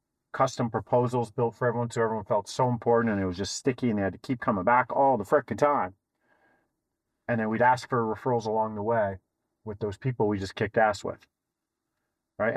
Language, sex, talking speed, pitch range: English, male, 210 wpm, 100-125 Hz